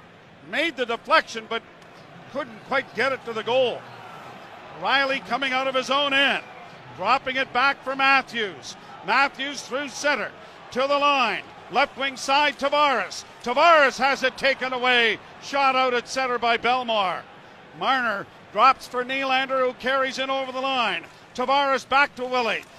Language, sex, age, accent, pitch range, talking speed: English, male, 50-69, American, 245-275 Hz, 155 wpm